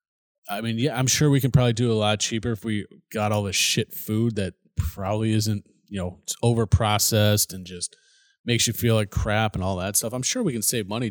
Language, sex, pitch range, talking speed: English, male, 105-150 Hz, 230 wpm